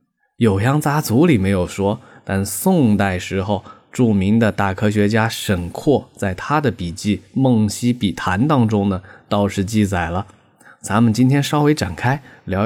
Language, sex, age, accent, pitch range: Chinese, male, 20-39, native, 100-135 Hz